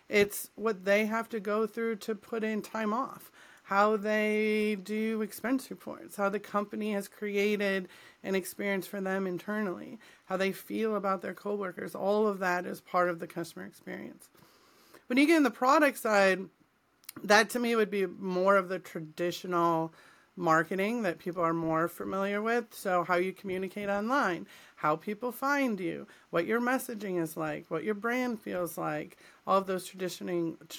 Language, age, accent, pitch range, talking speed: English, 40-59, American, 180-220 Hz, 170 wpm